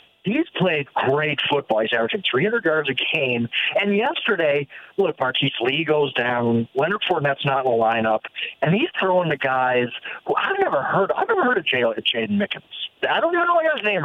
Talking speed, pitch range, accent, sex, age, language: 190 wpm, 145-245 Hz, American, male, 50-69, English